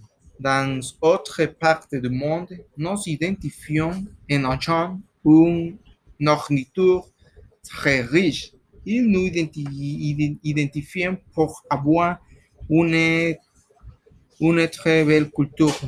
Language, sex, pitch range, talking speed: French, male, 145-175 Hz, 85 wpm